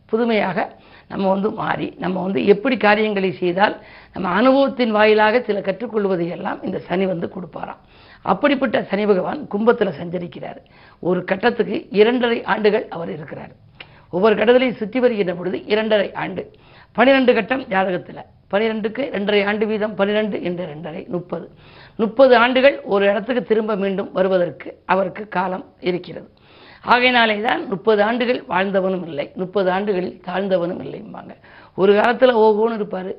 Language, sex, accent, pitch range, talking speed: Tamil, female, native, 185-235 Hz, 130 wpm